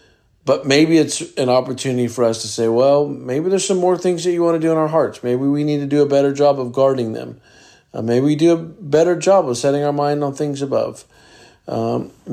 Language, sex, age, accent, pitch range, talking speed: English, male, 50-69, American, 110-140 Hz, 240 wpm